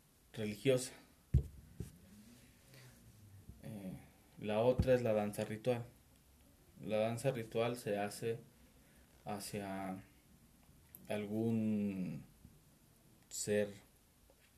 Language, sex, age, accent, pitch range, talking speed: Spanish, male, 30-49, Mexican, 95-115 Hz, 65 wpm